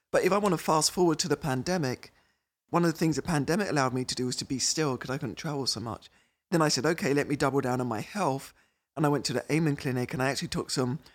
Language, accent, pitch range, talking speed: English, British, 130-160 Hz, 280 wpm